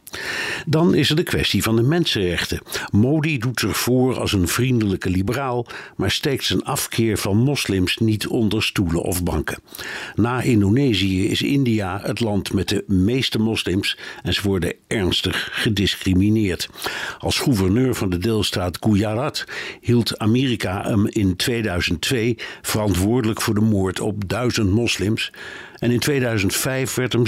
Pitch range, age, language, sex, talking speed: 95-120 Hz, 60-79, Dutch, male, 145 wpm